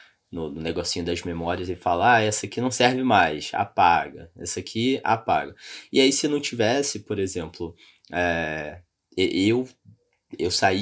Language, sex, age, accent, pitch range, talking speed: Portuguese, male, 20-39, Brazilian, 85-110 Hz, 155 wpm